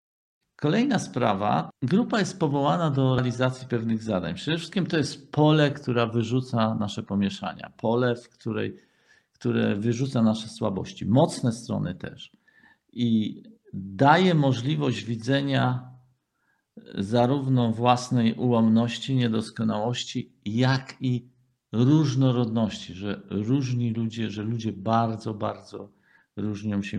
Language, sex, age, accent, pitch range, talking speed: Polish, male, 50-69, native, 105-130 Hz, 105 wpm